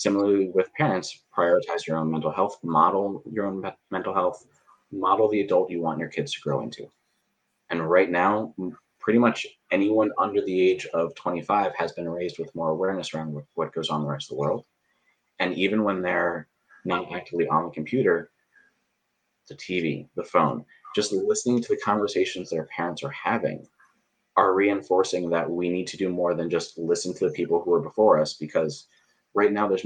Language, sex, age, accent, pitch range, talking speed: English, male, 30-49, American, 80-110 Hz, 190 wpm